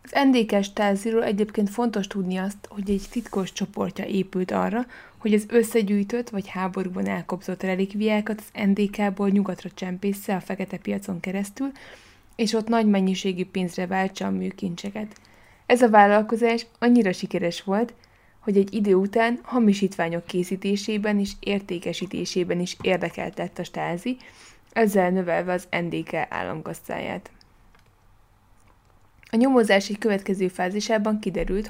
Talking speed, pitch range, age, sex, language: 120 wpm, 180-210 Hz, 20-39, female, Hungarian